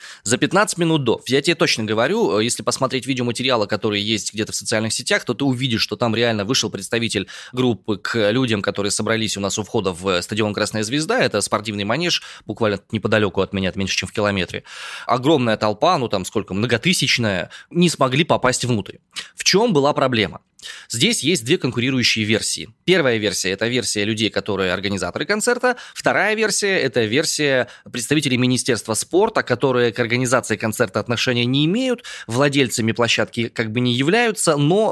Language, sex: Russian, male